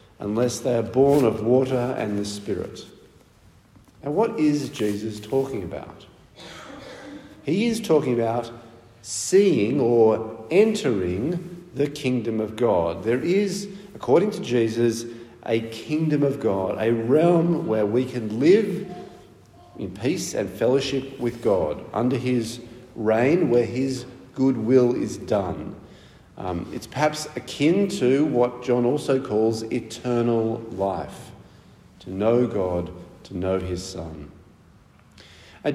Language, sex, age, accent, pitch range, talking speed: English, male, 50-69, Australian, 105-135 Hz, 125 wpm